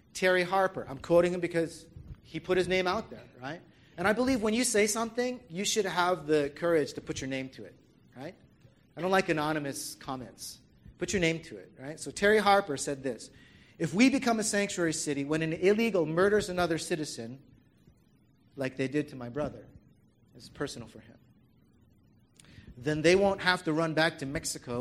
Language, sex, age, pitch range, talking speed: English, male, 40-59, 125-170 Hz, 190 wpm